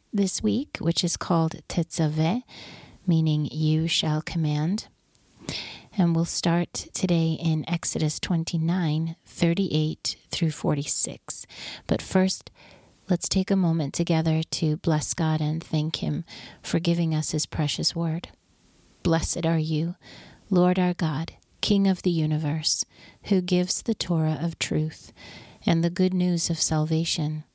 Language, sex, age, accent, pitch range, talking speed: English, female, 40-59, American, 155-185 Hz, 130 wpm